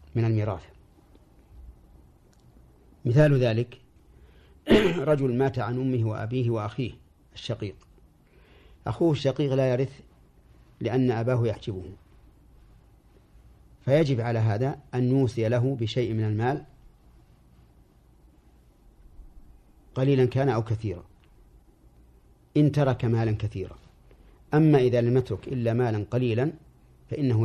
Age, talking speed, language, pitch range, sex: 50-69, 90 wpm, Arabic, 85-125 Hz, male